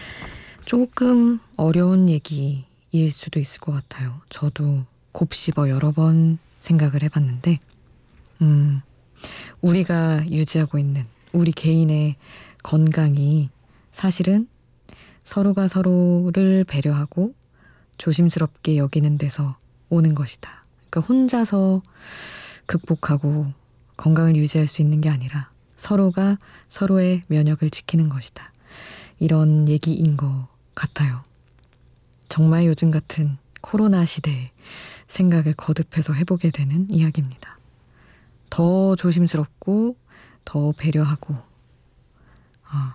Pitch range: 145-175 Hz